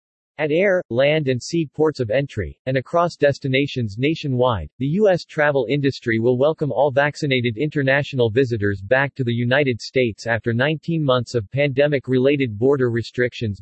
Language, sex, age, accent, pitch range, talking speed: English, male, 40-59, American, 120-150 Hz, 150 wpm